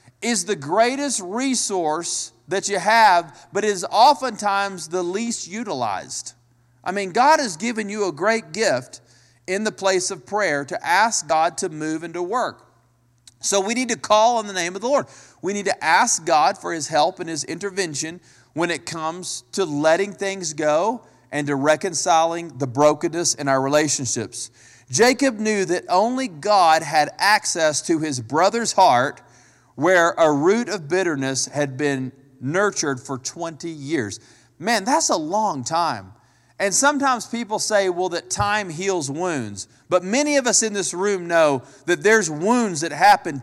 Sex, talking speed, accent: male, 165 wpm, American